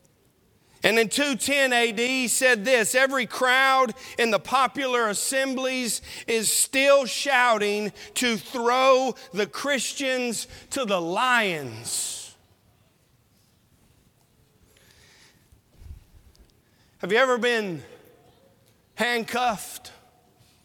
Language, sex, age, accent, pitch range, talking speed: English, male, 40-59, American, 225-280 Hz, 80 wpm